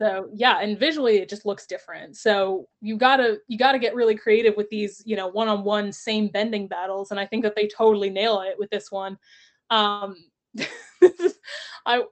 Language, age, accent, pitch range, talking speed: English, 20-39, American, 210-270 Hz, 205 wpm